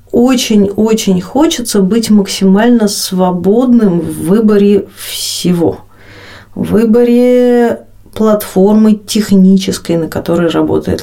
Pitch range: 175-220 Hz